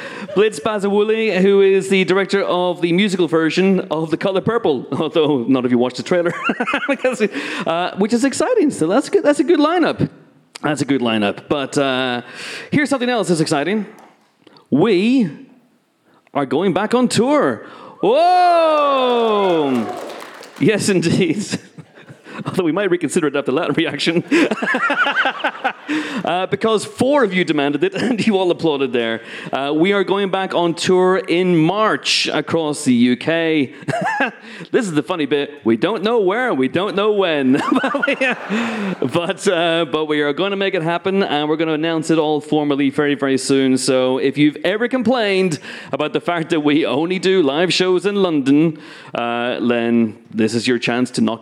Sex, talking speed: male, 170 wpm